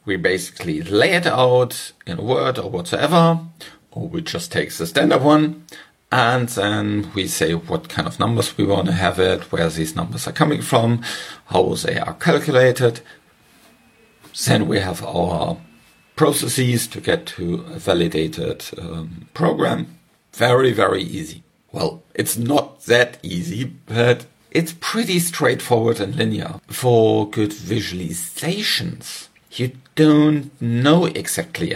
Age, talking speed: 50-69, 140 wpm